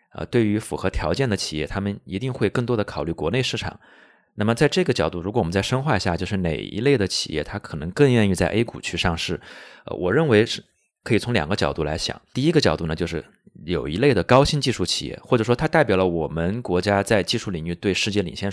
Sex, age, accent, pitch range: male, 20-39, native, 85-115 Hz